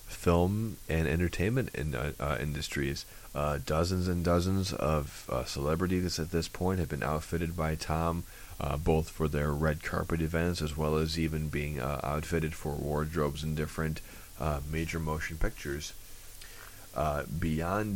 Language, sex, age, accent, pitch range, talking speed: English, male, 30-49, American, 75-90 Hz, 150 wpm